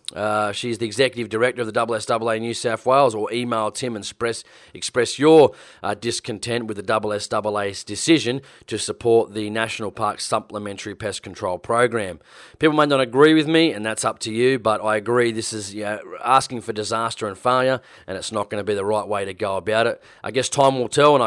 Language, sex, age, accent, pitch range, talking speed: English, male, 30-49, Australian, 110-135 Hz, 210 wpm